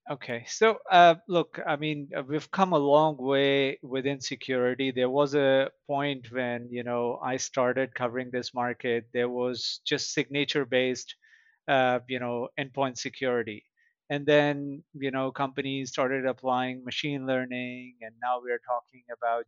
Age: 30-49